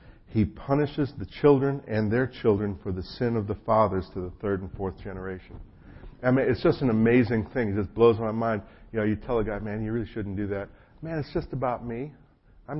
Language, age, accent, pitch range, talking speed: English, 50-69, American, 100-130 Hz, 230 wpm